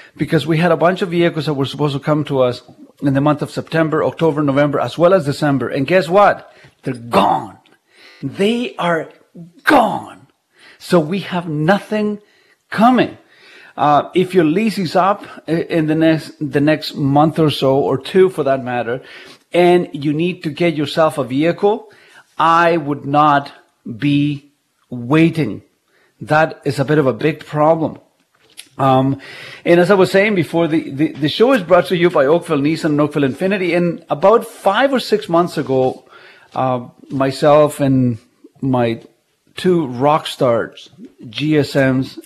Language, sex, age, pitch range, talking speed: English, male, 50-69, 140-170 Hz, 160 wpm